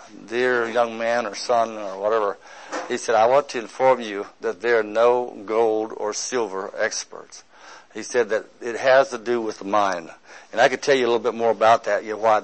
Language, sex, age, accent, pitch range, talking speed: English, male, 60-79, American, 115-135 Hz, 210 wpm